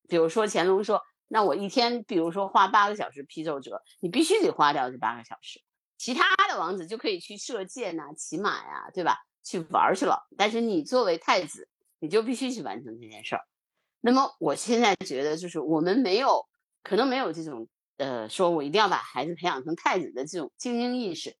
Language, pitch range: Chinese, 155-245 Hz